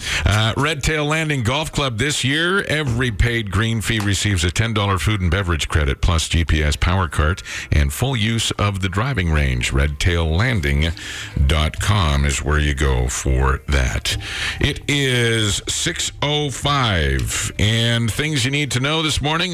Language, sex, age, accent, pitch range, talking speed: English, male, 50-69, American, 85-115 Hz, 145 wpm